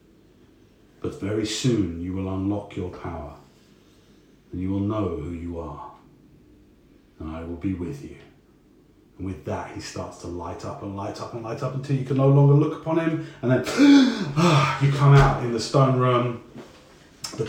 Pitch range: 90-125 Hz